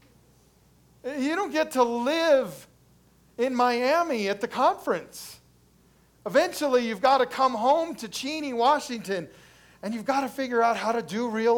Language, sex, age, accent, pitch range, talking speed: English, male, 40-59, American, 180-240 Hz, 150 wpm